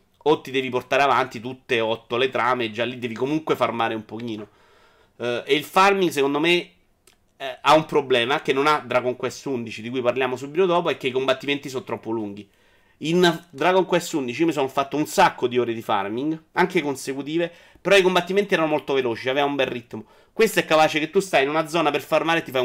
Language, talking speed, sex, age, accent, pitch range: Italian, 225 wpm, male, 30-49, native, 120-165 Hz